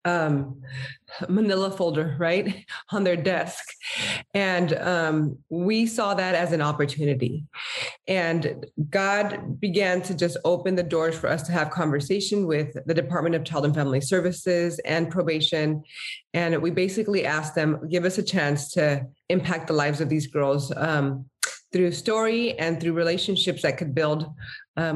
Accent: American